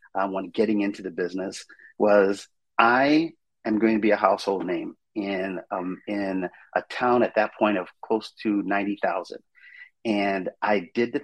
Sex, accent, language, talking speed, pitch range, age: male, American, English, 165 wpm, 100-120 Hz, 40-59